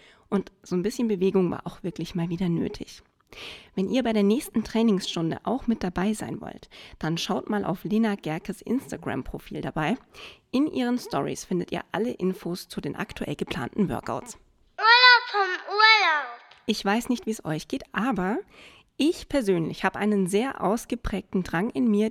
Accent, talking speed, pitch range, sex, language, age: German, 170 wpm, 180-235 Hz, female, German, 20-39